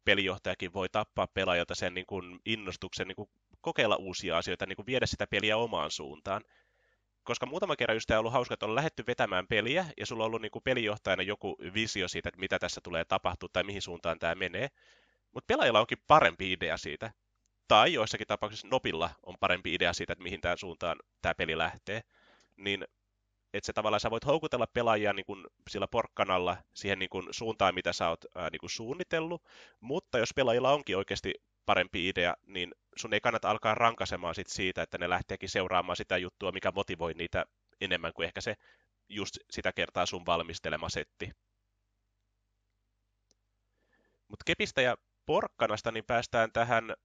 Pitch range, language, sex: 95-115 Hz, Finnish, male